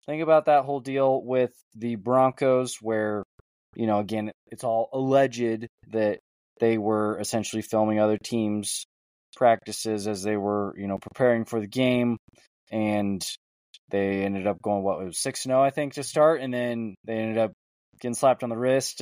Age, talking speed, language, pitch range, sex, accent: 20-39, 175 wpm, English, 110-140 Hz, male, American